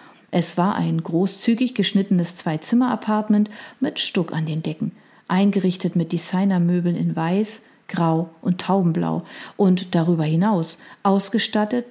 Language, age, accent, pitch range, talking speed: German, 40-59, German, 170-215 Hz, 115 wpm